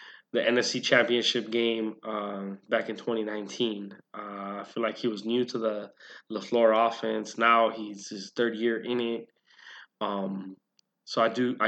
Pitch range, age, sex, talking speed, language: 105-130 Hz, 20-39, male, 160 wpm, English